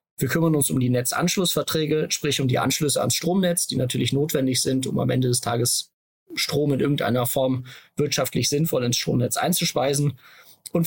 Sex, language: male, German